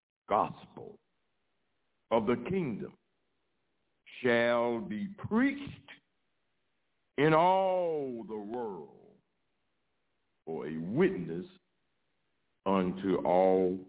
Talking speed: 70 wpm